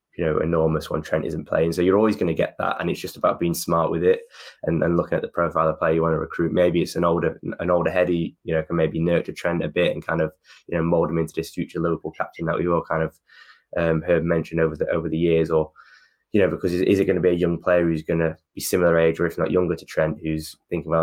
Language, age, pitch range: English, 10-29, 80-85 Hz